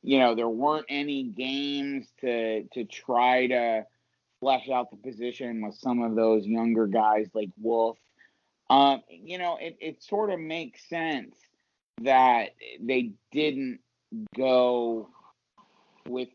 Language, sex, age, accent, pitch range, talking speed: English, male, 30-49, American, 115-160 Hz, 130 wpm